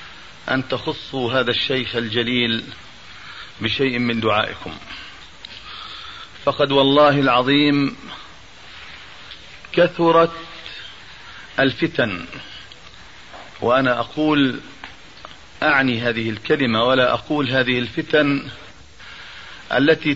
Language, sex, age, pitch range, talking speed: Arabic, male, 40-59, 125-145 Hz, 70 wpm